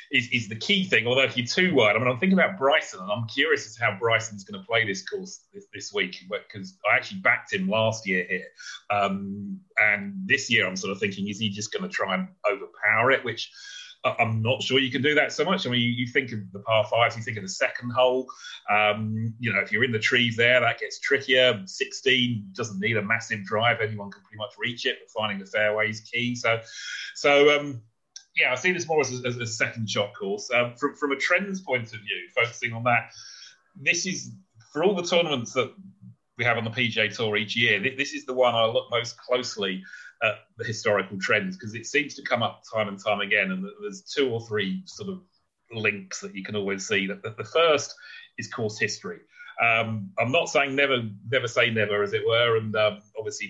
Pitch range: 110-170 Hz